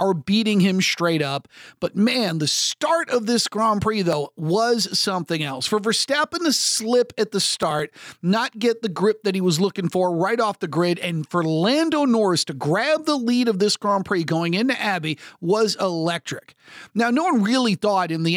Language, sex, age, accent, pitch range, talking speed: English, male, 40-59, American, 175-235 Hz, 200 wpm